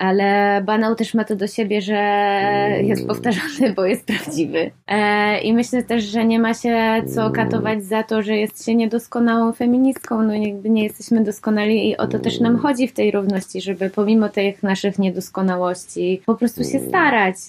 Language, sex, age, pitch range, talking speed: Polish, female, 20-39, 200-225 Hz, 180 wpm